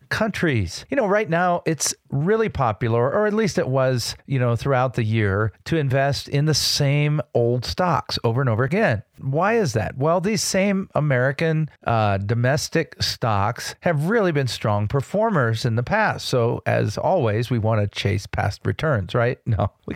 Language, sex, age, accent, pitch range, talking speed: English, male, 40-59, American, 110-155 Hz, 175 wpm